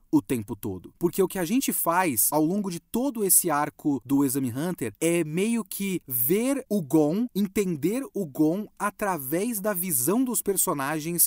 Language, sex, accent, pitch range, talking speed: Portuguese, male, Brazilian, 140-185 Hz, 170 wpm